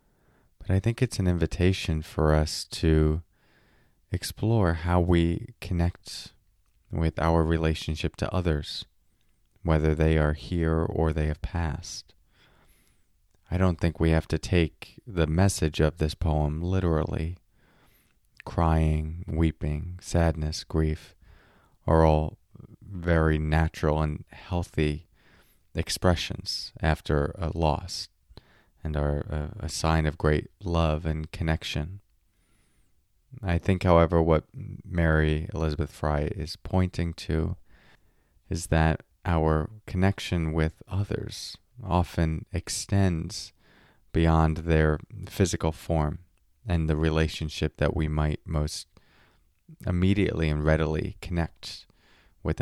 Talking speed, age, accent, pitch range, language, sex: 110 wpm, 30-49, American, 80-95 Hz, English, male